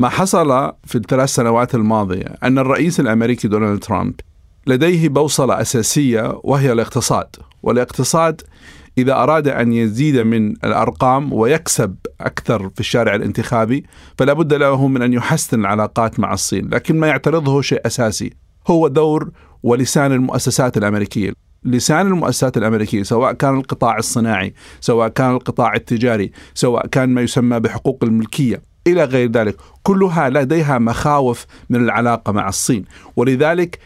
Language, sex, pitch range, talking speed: Arabic, male, 115-155 Hz, 130 wpm